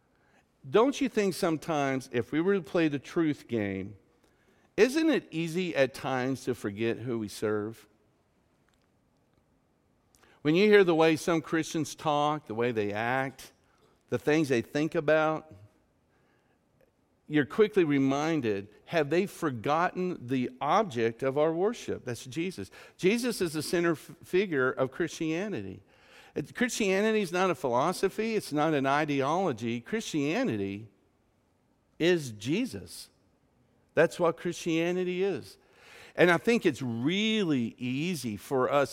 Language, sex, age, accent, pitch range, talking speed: English, male, 50-69, American, 125-185 Hz, 130 wpm